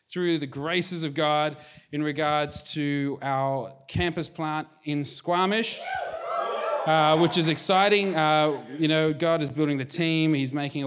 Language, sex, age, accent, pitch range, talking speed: English, male, 30-49, Australian, 135-160 Hz, 150 wpm